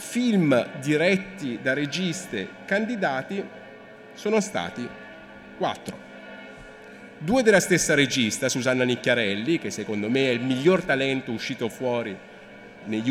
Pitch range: 115-185 Hz